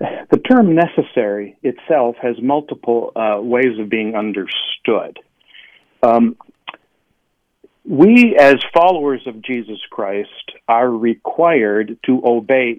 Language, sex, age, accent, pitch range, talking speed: English, male, 50-69, American, 110-135 Hz, 105 wpm